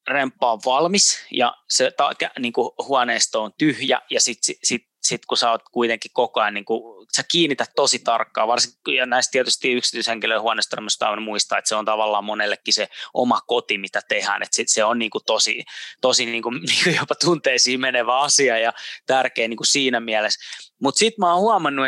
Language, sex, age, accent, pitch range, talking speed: Finnish, male, 20-39, native, 110-140 Hz, 190 wpm